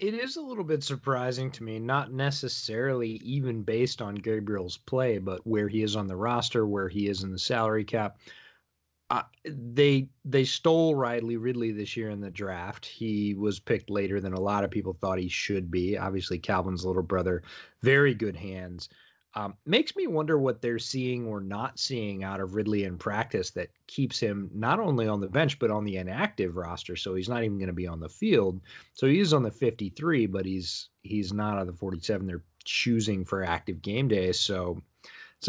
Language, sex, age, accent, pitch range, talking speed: English, male, 30-49, American, 95-120 Hz, 200 wpm